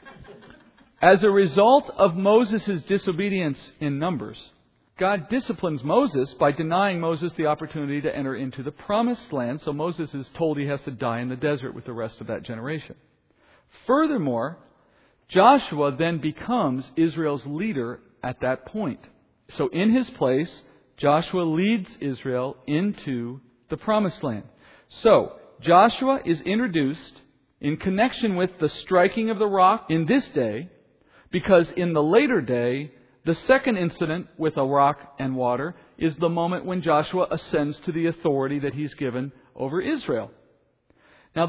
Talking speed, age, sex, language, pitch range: 150 wpm, 50-69, male, English, 140-195 Hz